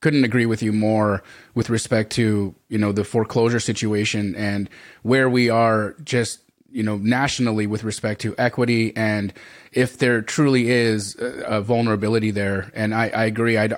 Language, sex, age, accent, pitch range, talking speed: English, male, 30-49, American, 110-125 Hz, 165 wpm